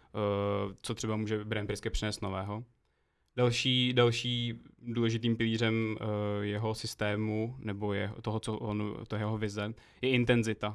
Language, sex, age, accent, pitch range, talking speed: Czech, male, 20-39, native, 105-115 Hz, 140 wpm